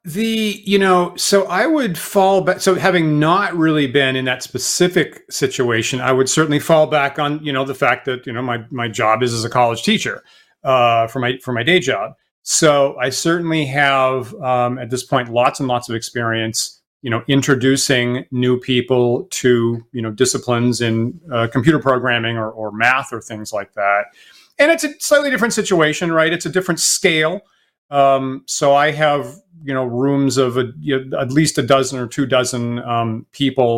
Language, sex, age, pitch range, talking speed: English, male, 40-59, 125-165 Hz, 195 wpm